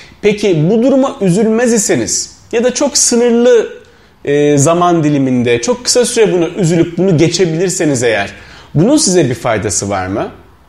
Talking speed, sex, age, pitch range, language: 140 wpm, male, 40-59, 150-220 Hz, Turkish